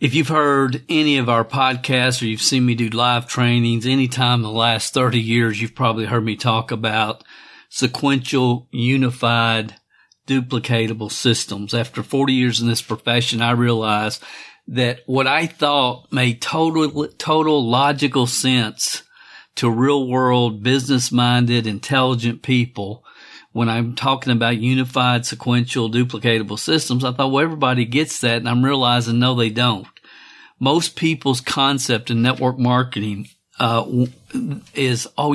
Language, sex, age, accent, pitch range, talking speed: English, male, 50-69, American, 115-135 Hz, 135 wpm